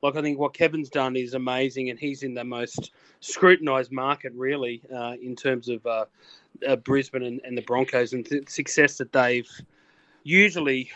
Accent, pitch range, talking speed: Australian, 130-155 Hz, 180 wpm